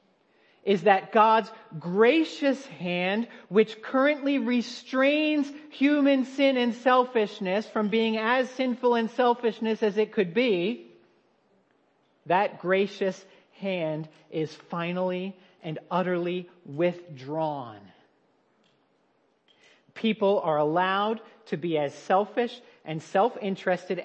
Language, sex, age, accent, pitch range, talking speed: English, male, 40-59, American, 165-220 Hz, 95 wpm